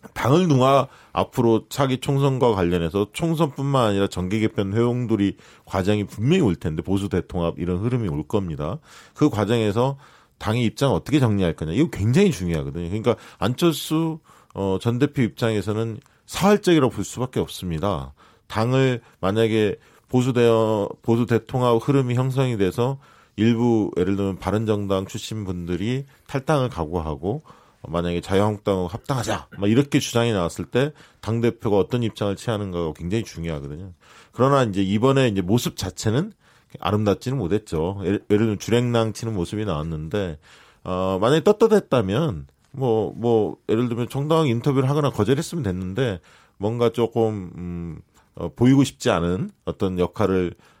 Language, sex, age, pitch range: Korean, male, 40-59, 95-130 Hz